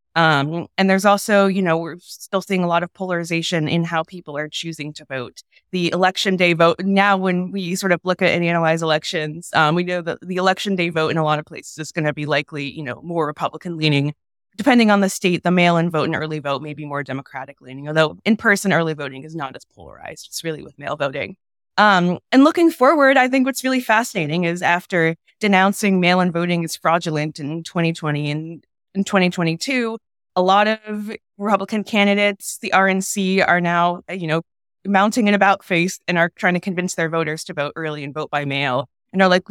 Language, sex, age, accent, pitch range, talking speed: English, female, 20-39, American, 160-200 Hz, 215 wpm